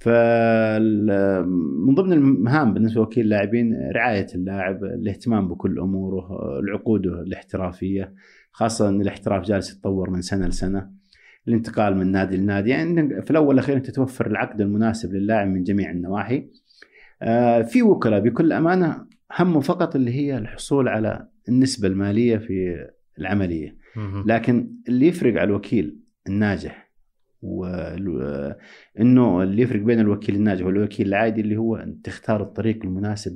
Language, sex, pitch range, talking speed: Arabic, male, 95-115 Hz, 130 wpm